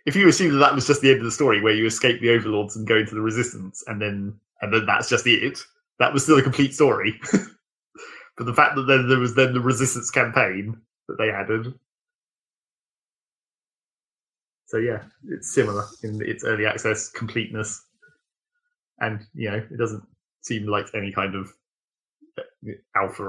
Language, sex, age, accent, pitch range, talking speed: English, male, 20-39, British, 110-140 Hz, 180 wpm